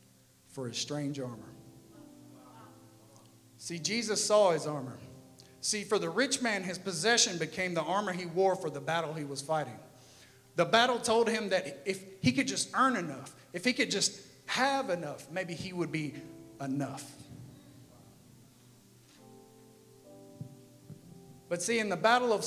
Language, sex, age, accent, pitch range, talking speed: English, male, 40-59, American, 150-220 Hz, 145 wpm